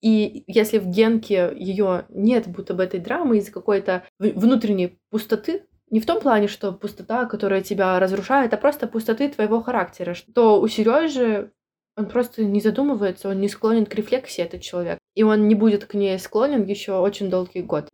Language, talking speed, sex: Russian, 175 wpm, female